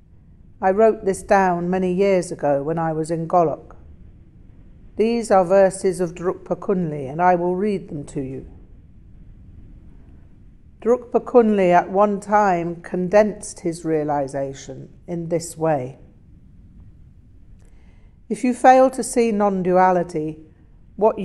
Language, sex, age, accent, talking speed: English, female, 60-79, British, 120 wpm